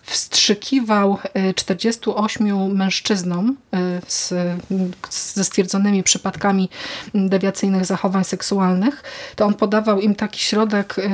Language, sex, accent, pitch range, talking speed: Polish, female, native, 195-225 Hz, 85 wpm